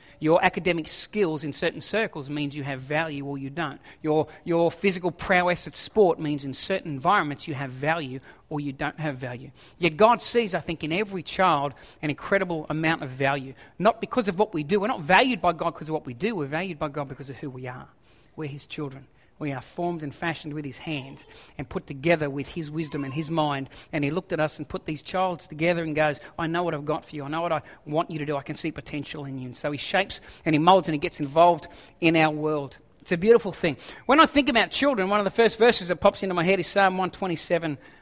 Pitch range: 145-180 Hz